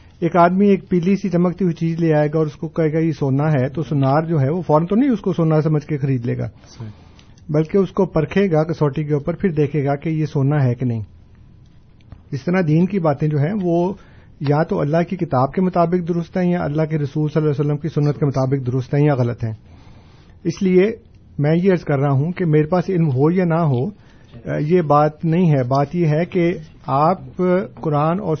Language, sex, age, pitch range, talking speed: Urdu, male, 50-69, 135-170 Hz, 230 wpm